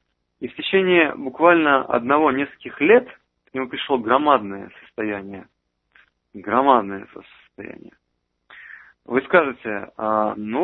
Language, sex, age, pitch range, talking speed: Russian, male, 20-39, 105-140 Hz, 95 wpm